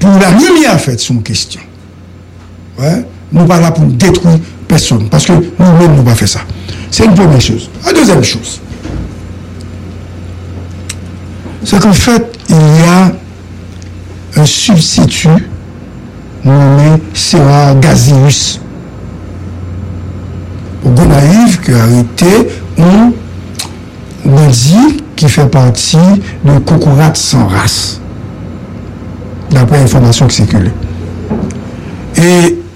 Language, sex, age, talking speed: English, male, 60-79, 115 wpm